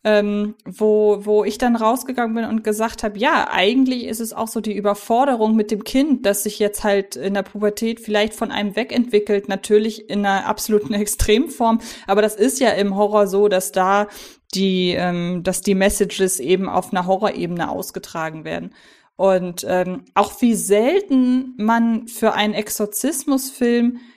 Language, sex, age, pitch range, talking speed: German, female, 20-39, 205-240 Hz, 165 wpm